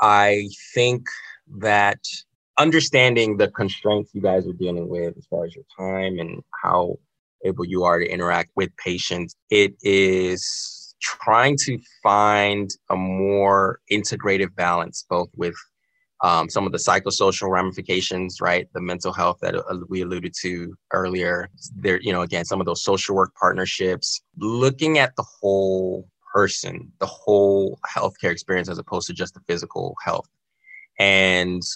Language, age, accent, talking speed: English, 20-39, American, 145 wpm